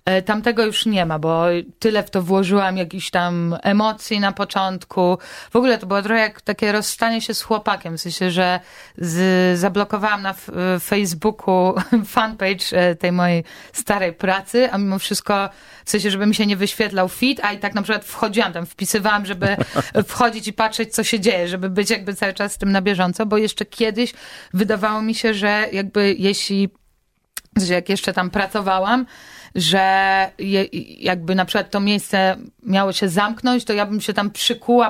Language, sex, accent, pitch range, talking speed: Polish, female, native, 190-220 Hz, 180 wpm